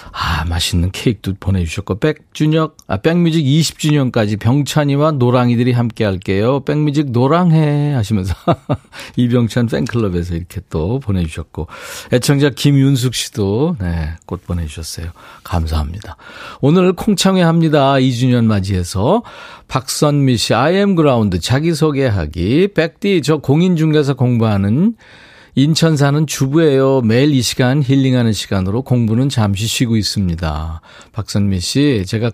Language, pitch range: Korean, 110-155 Hz